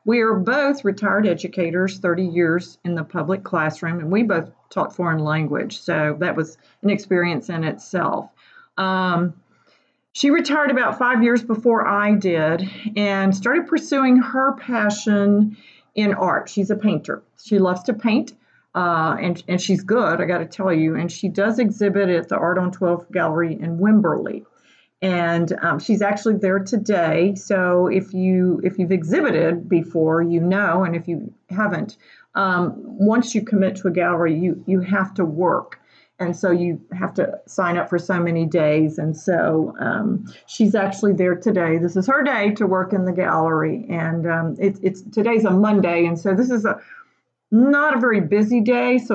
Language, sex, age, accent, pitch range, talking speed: English, female, 40-59, American, 170-210 Hz, 175 wpm